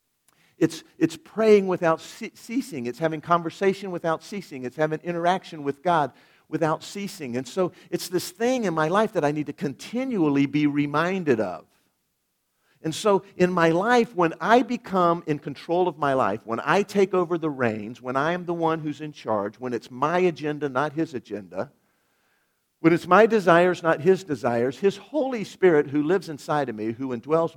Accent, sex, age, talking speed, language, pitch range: American, male, 50-69, 185 wpm, English, 135-180 Hz